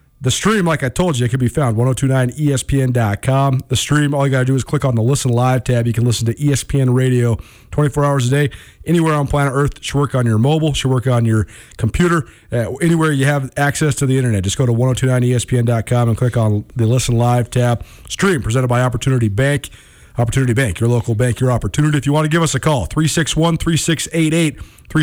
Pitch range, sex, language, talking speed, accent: 115-145 Hz, male, English, 220 wpm, American